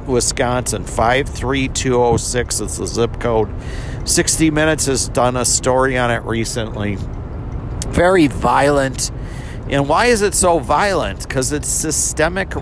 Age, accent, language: 50-69, American, English